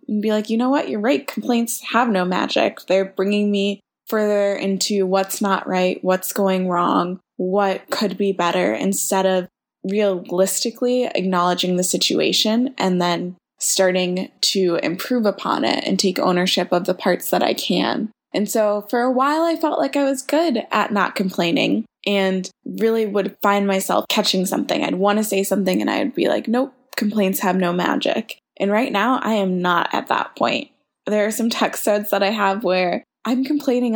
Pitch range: 190-225 Hz